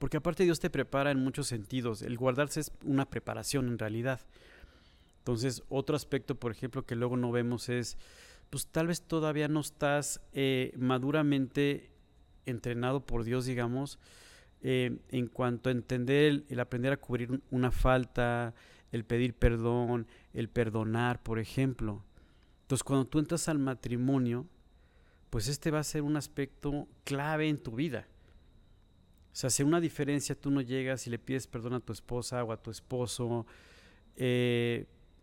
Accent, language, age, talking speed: Mexican, Spanish, 40-59, 160 wpm